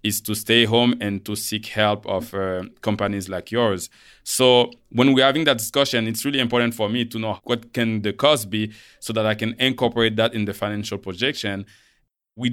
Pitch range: 100-120 Hz